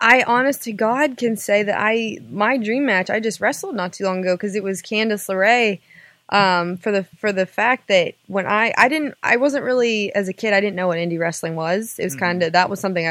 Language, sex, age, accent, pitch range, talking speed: English, female, 20-39, American, 175-220 Hz, 245 wpm